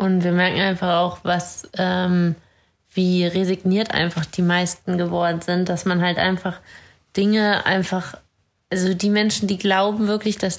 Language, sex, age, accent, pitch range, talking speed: German, female, 20-39, German, 185-205 Hz, 155 wpm